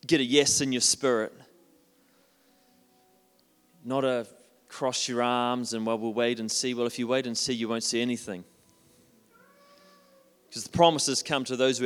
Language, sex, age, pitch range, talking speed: English, male, 30-49, 115-150 Hz, 170 wpm